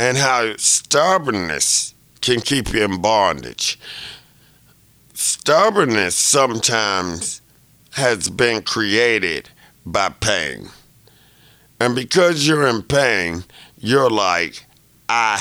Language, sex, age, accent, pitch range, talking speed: English, male, 50-69, American, 90-120 Hz, 90 wpm